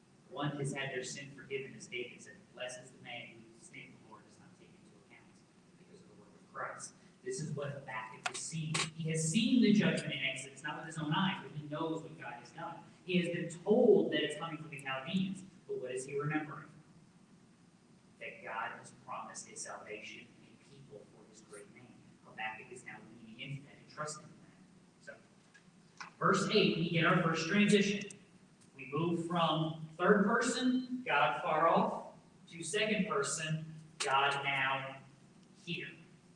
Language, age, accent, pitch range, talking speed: English, 40-59, American, 150-195 Hz, 180 wpm